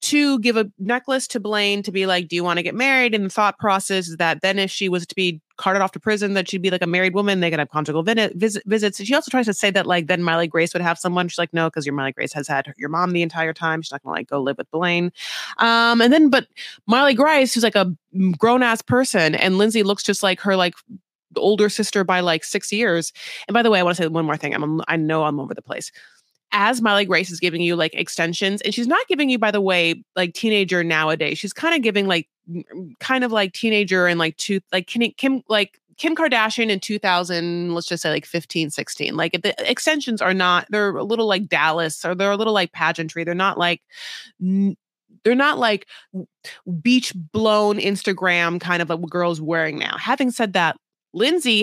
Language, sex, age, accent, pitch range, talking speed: English, female, 30-49, American, 170-220 Hz, 240 wpm